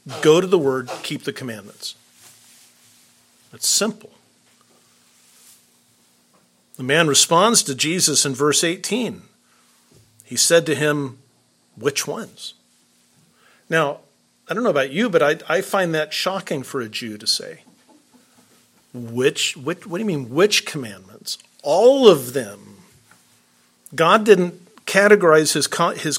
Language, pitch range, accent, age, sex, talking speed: English, 120-180 Hz, American, 50-69, male, 130 wpm